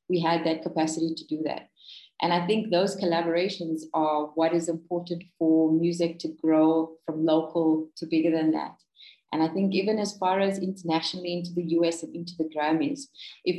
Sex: female